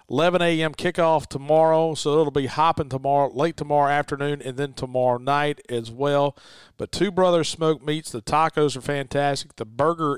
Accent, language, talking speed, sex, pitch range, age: American, English, 170 wpm, male, 125-150 Hz, 40-59